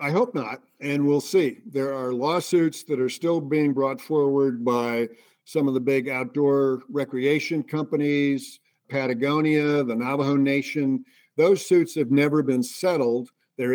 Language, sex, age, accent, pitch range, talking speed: English, male, 50-69, American, 130-155 Hz, 150 wpm